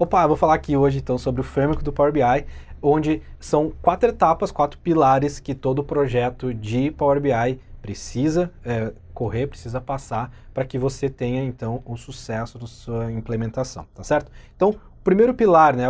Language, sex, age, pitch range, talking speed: Portuguese, male, 20-39, 120-155 Hz, 175 wpm